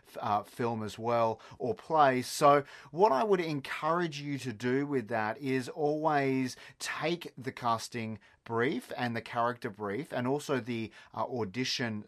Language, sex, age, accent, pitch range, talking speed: English, male, 30-49, Australian, 115-140 Hz, 155 wpm